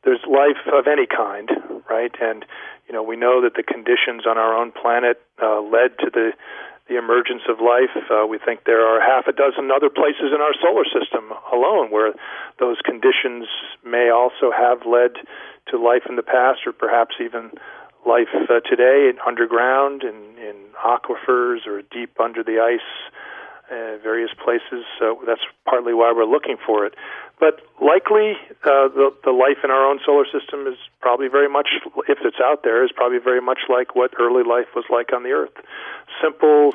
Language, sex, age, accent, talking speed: English, male, 40-59, American, 180 wpm